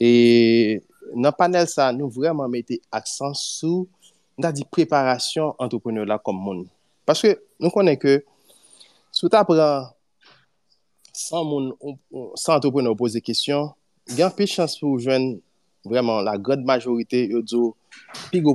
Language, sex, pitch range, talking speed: French, male, 125-180 Hz, 130 wpm